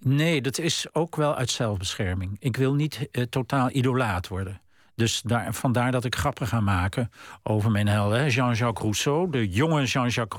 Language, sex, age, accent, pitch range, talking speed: Dutch, male, 50-69, Dutch, 110-145 Hz, 170 wpm